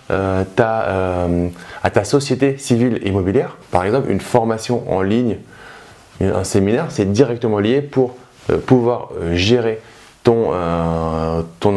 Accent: French